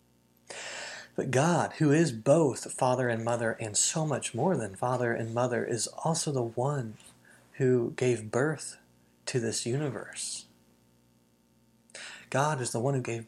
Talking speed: 145 wpm